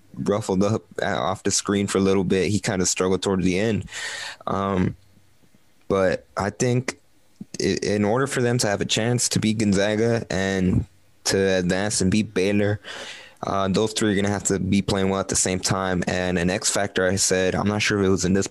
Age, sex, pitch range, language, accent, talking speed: 20-39, male, 95-105 Hz, English, American, 215 wpm